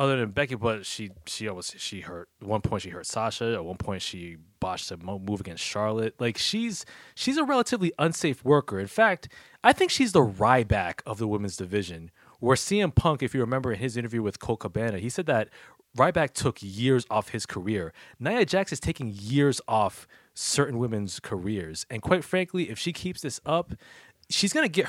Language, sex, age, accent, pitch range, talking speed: English, male, 20-39, American, 105-155 Hz, 200 wpm